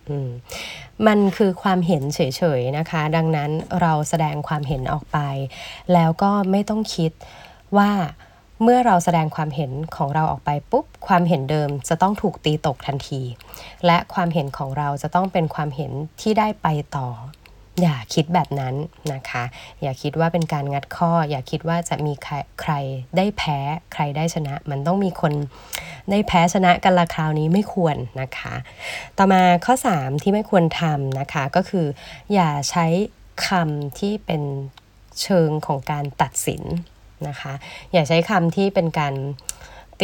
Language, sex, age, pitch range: Thai, female, 20-39, 145-185 Hz